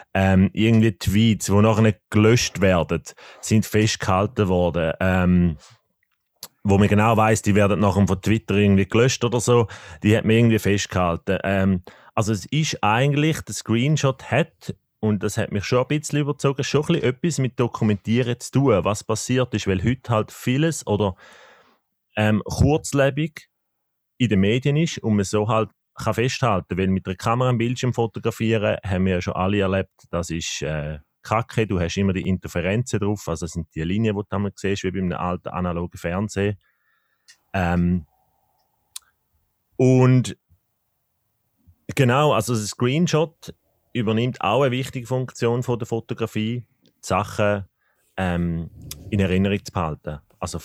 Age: 30-49